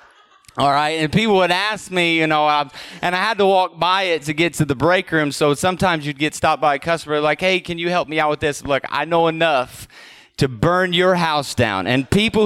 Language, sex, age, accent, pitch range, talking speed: English, male, 30-49, American, 150-195 Hz, 240 wpm